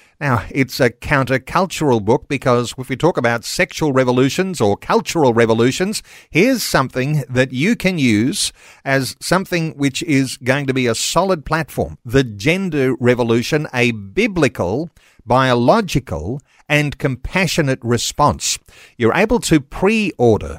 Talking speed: 130 wpm